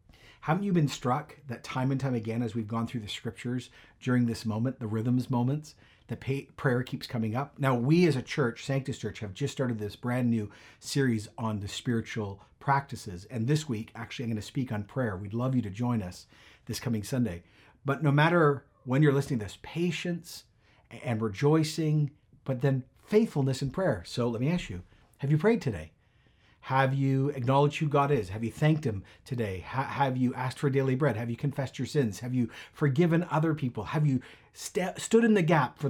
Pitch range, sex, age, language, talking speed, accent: 110-145 Hz, male, 40-59, English, 205 wpm, American